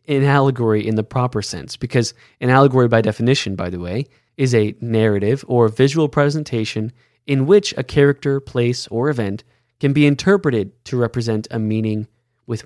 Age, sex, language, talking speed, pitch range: 20-39, male, English, 165 wpm, 110-135 Hz